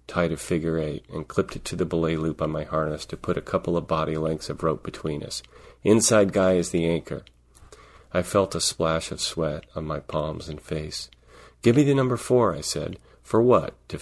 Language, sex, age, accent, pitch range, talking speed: English, male, 40-59, American, 75-90 Hz, 220 wpm